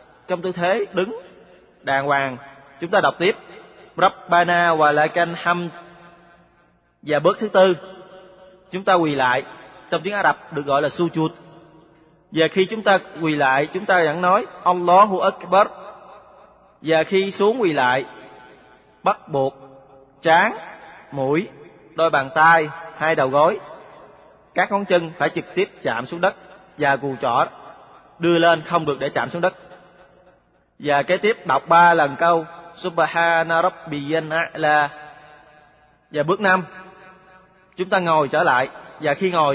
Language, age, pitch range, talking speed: Vietnamese, 20-39, 150-185 Hz, 145 wpm